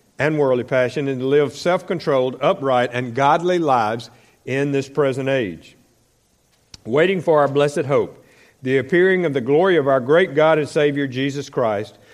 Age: 50-69